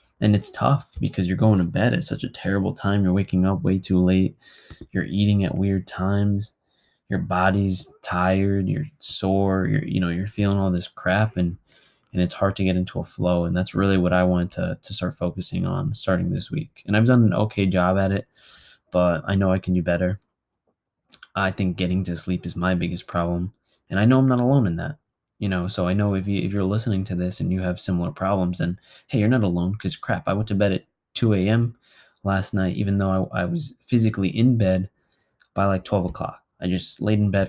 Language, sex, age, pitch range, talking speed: English, male, 20-39, 90-105 Hz, 220 wpm